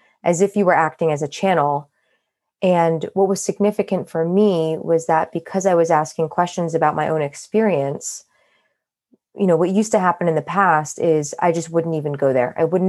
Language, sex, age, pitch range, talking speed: English, female, 20-39, 155-180 Hz, 200 wpm